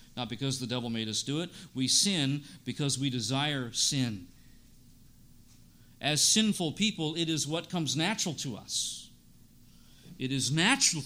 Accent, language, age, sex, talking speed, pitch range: American, English, 50-69, male, 145 wpm, 130-200 Hz